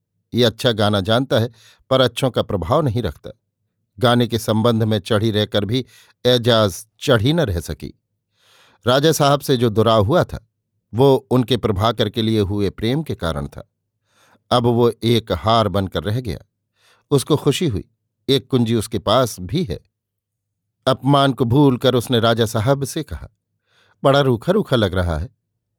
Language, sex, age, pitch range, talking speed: Hindi, male, 50-69, 105-130 Hz, 165 wpm